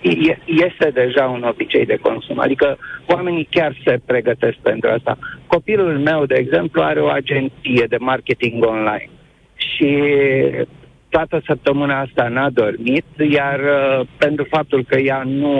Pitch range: 130-165 Hz